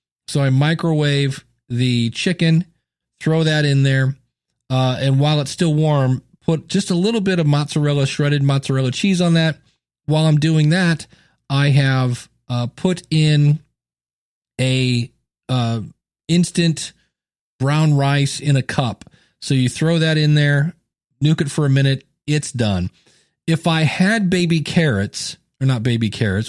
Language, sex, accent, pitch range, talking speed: English, male, American, 125-160 Hz, 150 wpm